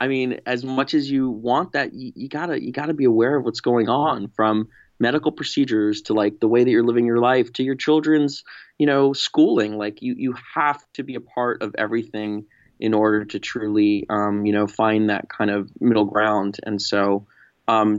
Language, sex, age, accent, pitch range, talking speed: English, male, 20-39, American, 105-120 Hz, 215 wpm